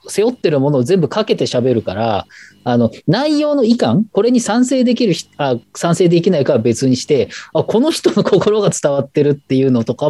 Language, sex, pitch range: Japanese, male, 115-155 Hz